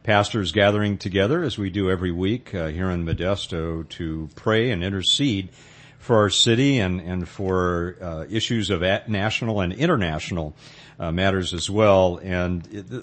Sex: male